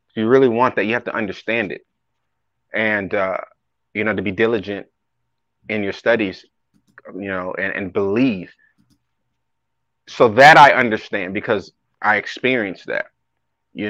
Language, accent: English, American